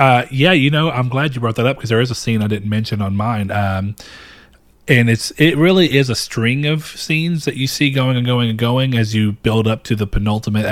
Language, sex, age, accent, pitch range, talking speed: English, male, 30-49, American, 105-125 Hz, 250 wpm